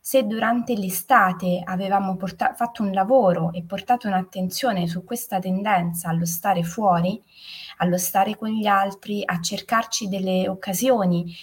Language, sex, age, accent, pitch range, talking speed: Italian, female, 20-39, native, 180-230 Hz, 130 wpm